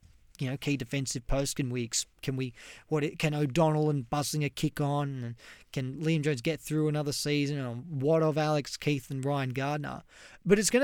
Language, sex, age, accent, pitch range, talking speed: English, male, 30-49, Australian, 135-165 Hz, 200 wpm